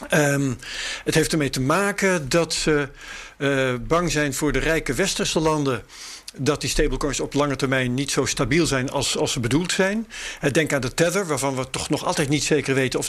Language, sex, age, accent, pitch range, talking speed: Dutch, male, 50-69, Dutch, 135-170 Hz, 200 wpm